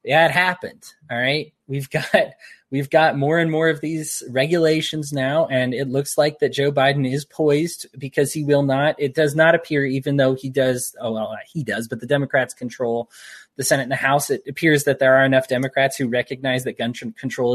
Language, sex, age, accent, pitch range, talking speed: English, male, 20-39, American, 130-150 Hz, 210 wpm